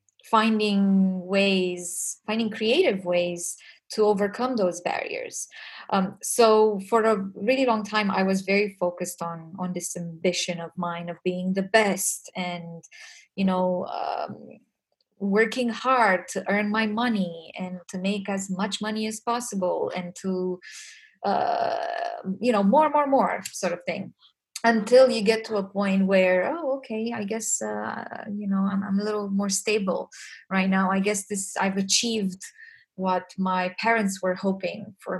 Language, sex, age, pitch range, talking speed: English, female, 20-39, 180-220 Hz, 155 wpm